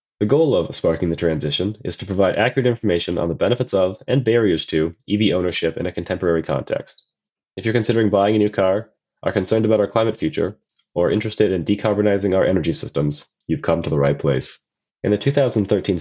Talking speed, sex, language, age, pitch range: 200 wpm, male, English, 20-39, 85-105 Hz